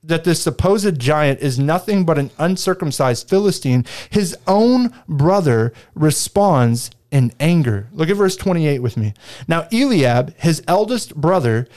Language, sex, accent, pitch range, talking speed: English, male, American, 125-190 Hz, 140 wpm